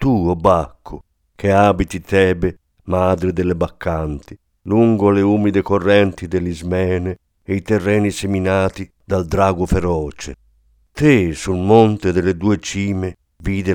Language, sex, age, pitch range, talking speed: Italian, male, 50-69, 85-100 Hz, 120 wpm